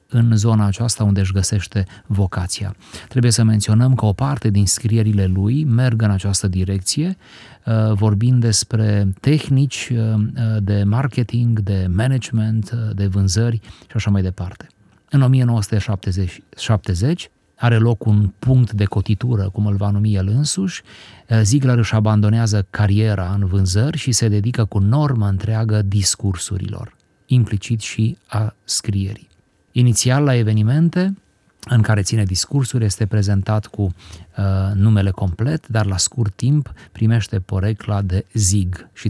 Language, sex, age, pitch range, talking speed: Romanian, male, 30-49, 100-120 Hz, 130 wpm